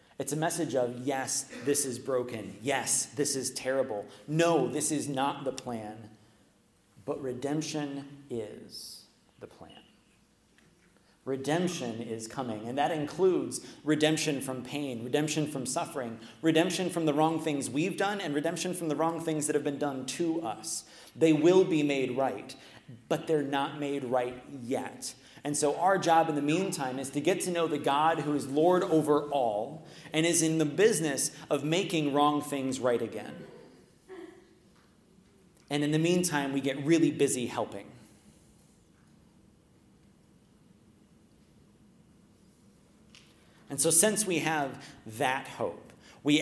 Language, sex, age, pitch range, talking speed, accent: English, male, 30-49, 130-160 Hz, 145 wpm, American